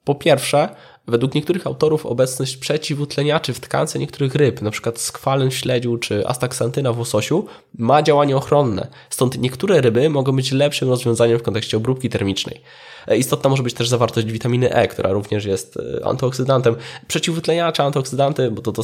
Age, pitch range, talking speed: 20-39, 115-140 Hz, 155 wpm